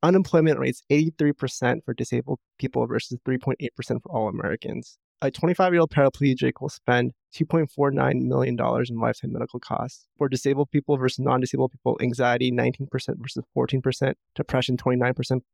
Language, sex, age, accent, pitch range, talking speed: English, male, 20-39, American, 125-145 Hz, 130 wpm